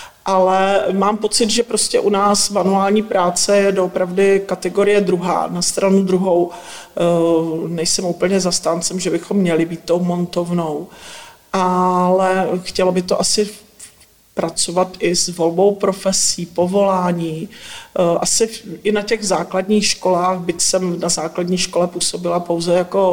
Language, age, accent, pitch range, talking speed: Czech, 40-59, native, 170-195 Hz, 130 wpm